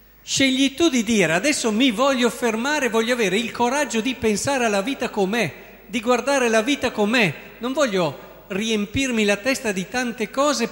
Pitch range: 160-235 Hz